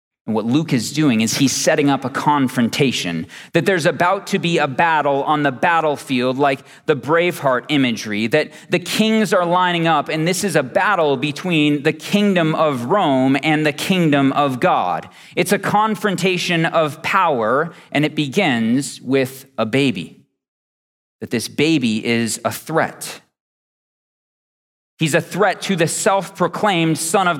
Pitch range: 150-195 Hz